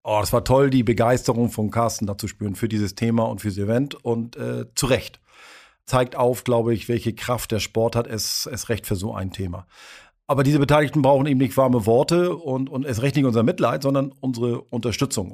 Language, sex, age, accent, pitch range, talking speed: German, male, 40-59, German, 115-140 Hz, 220 wpm